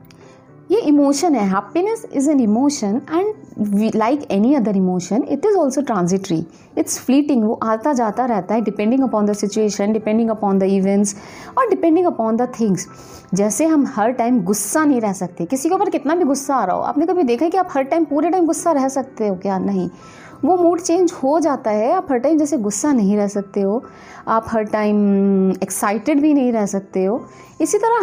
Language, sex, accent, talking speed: Hindi, female, native, 200 wpm